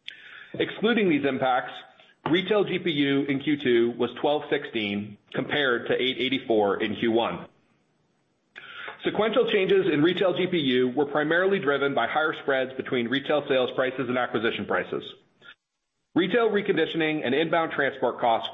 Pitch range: 125-170 Hz